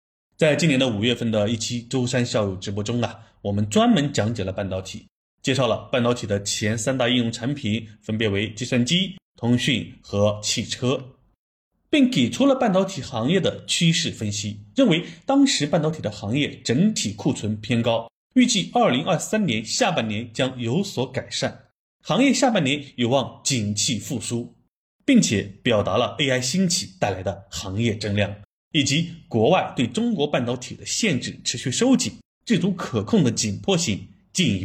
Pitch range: 105-175 Hz